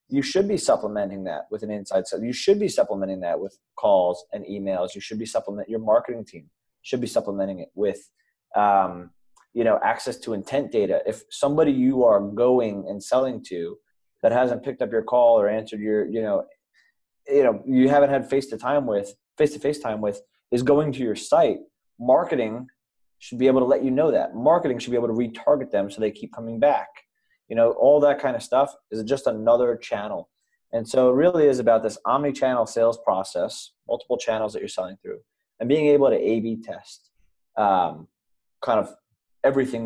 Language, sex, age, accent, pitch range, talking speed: English, male, 20-39, American, 105-145 Hz, 200 wpm